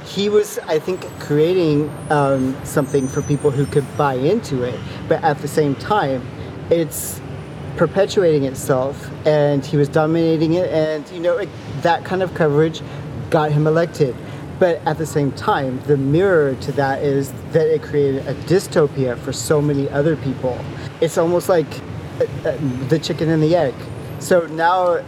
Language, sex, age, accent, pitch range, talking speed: English, male, 40-59, American, 140-160 Hz, 160 wpm